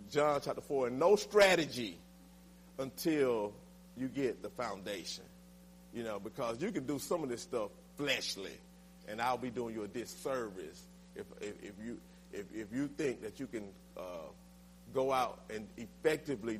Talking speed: 165 wpm